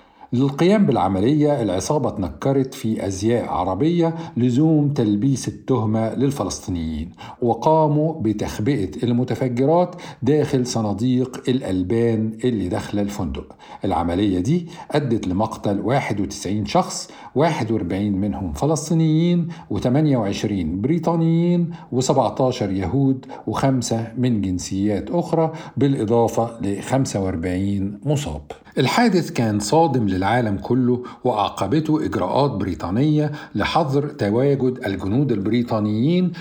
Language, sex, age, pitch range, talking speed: Arabic, male, 50-69, 105-140 Hz, 85 wpm